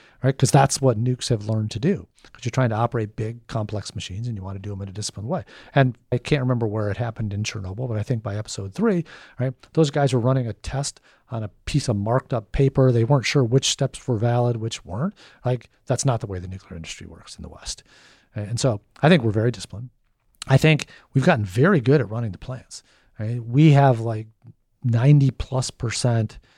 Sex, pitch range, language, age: male, 105-130 Hz, English, 40-59